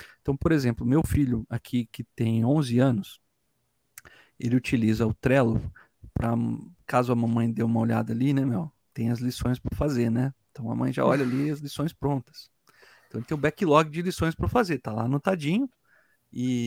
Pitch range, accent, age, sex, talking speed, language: 120-165 Hz, Brazilian, 40-59, male, 190 wpm, Portuguese